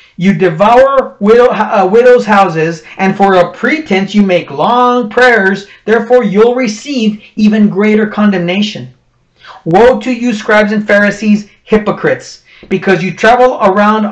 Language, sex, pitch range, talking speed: English, male, 190-235 Hz, 125 wpm